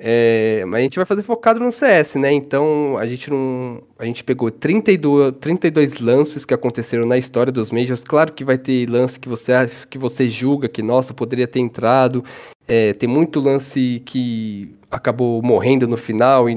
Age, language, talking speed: 10-29, Portuguese, 165 wpm